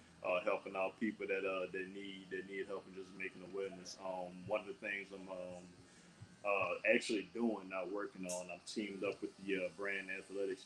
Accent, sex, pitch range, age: American, male, 90-100 Hz, 20-39